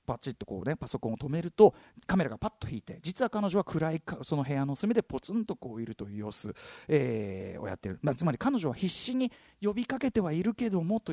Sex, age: male, 40-59